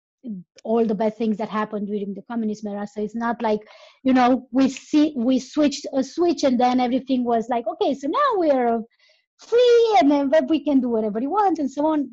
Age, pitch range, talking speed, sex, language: 20-39, 225-270 Hz, 215 wpm, female, English